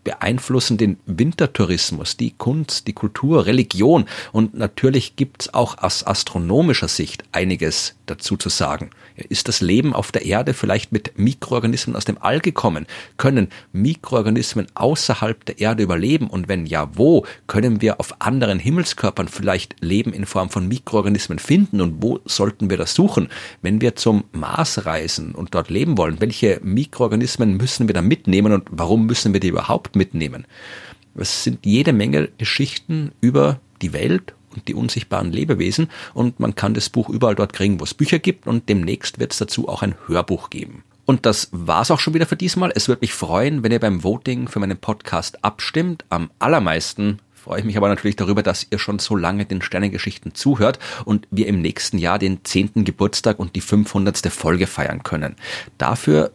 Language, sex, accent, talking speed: German, male, German, 180 wpm